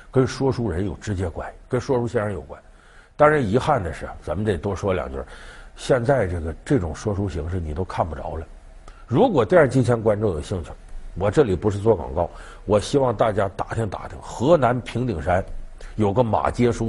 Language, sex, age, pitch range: Chinese, male, 50-69, 90-135 Hz